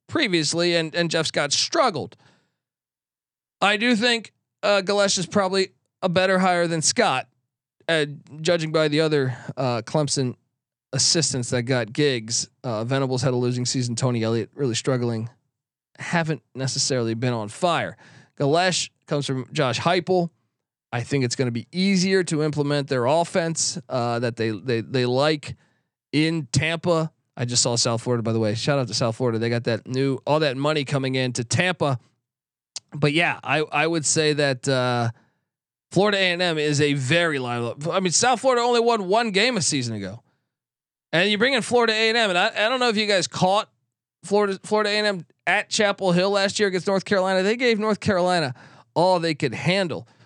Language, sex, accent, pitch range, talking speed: English, male, American, 125-185 Hz, 185 wpm